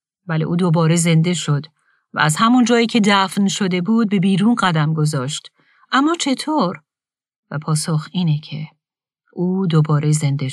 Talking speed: 150 wpm